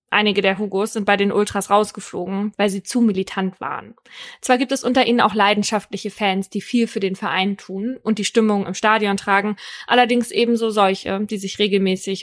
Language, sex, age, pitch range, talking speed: German, female, 20-39, 190-225 Hz, 190 wpm